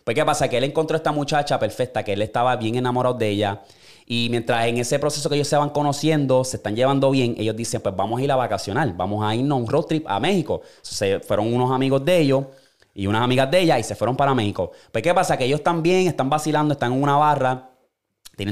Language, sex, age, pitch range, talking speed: Spanish, male, 20-39, 110-145 Hz, 255 wpm